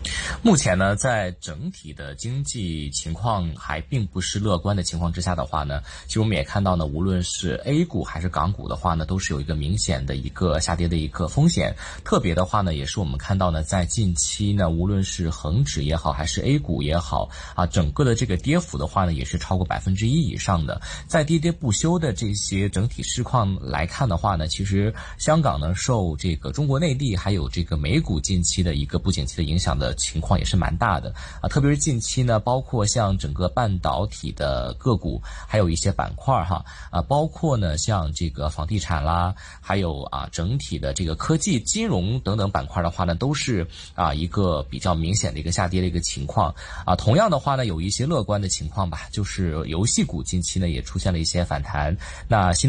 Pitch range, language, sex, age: 80-110 Hz, Chinese, male, 30-49